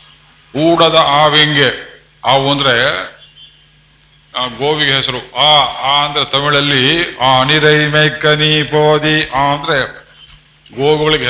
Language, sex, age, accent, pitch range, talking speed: Kannada, male, 50-69, native, 135-155 Hz, 90 wpm